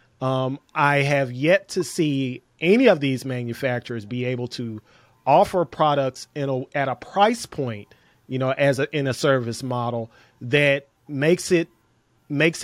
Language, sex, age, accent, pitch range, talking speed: English, male, 30-49, American, 125-155 Hz, 155 wpm